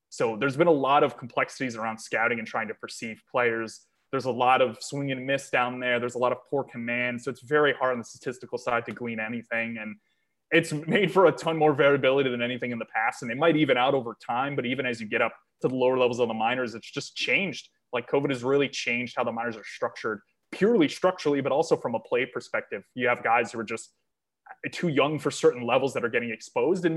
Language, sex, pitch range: English, male, 120-145 Hz